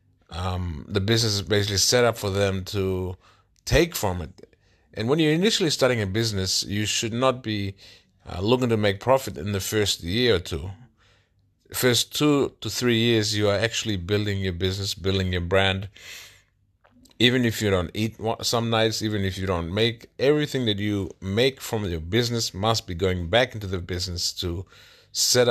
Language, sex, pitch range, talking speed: English, male, 95-115 Hz, 180 wpm